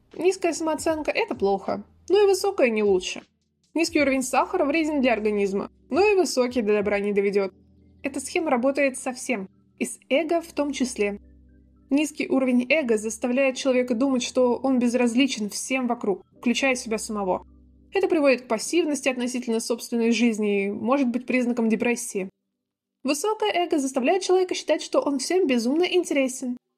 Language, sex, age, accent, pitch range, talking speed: Russian, female, 20-39, native, 215-290 Hz, 155 wpm